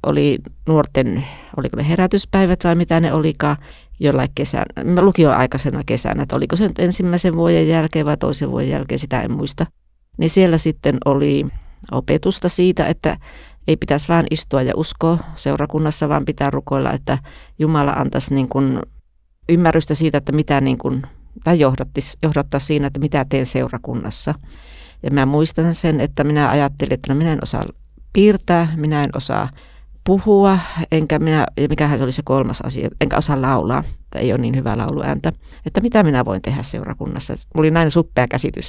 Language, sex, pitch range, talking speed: Finnish, female, 135-170 Hz, 165 wpm